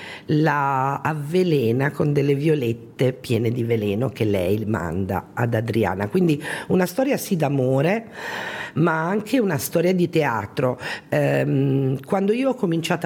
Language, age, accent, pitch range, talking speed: Italian, 50-69, native, 125-175 Hz, 135 wpm